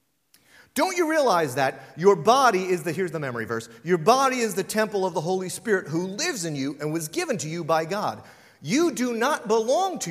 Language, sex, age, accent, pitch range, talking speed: English, male, 40-59, American, 165-245 Hz, 220 wpm